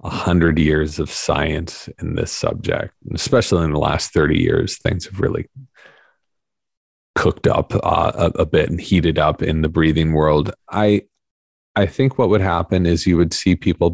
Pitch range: 80-95 Hz